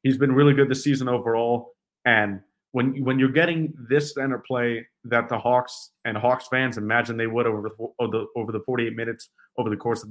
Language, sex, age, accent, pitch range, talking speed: English, male, 30-49, American, 120-140 Hz, 210 wpm